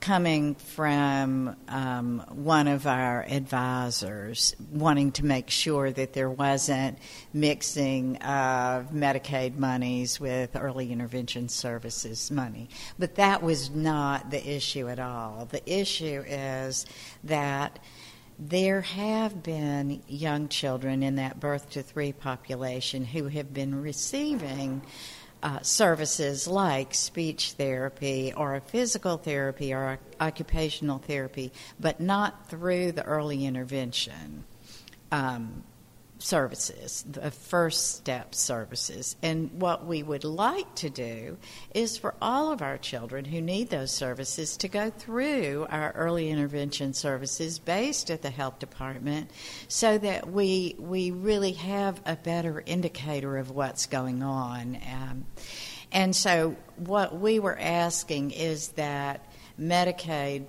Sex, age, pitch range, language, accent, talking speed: female, 60-79, 130-165 Hz, English, American, 125 wpm